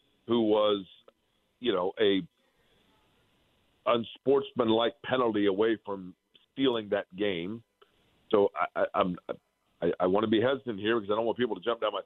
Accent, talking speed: American, 160 wpm